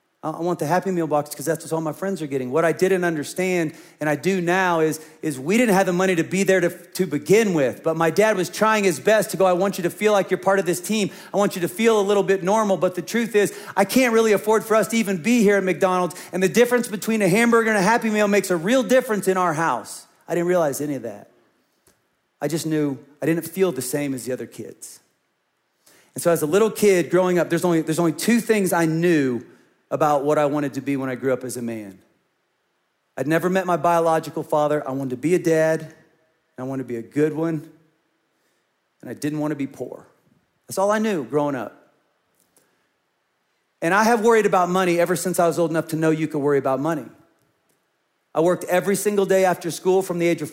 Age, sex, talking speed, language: 40-59, male, 245 wpm, English